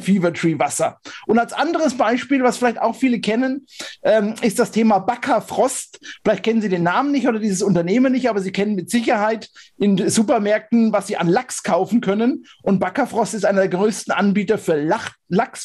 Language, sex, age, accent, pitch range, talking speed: German, male, 50-69, German, 190-230 Hz, 190 wpm